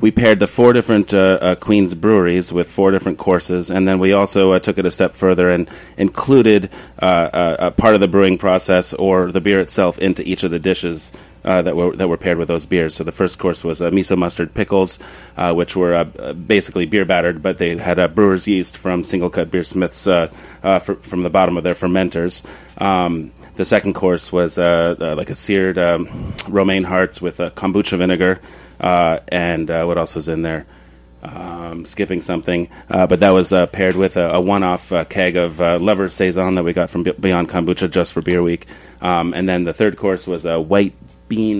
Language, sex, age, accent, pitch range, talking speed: English, male, 30-49, American, 85-95 Hz, 215 wpm